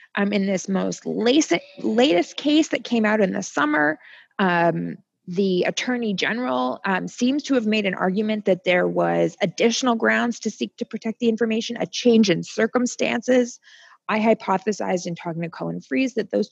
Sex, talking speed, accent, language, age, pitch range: female, 170 wpm, American, English, 20-39, 190-245 Hz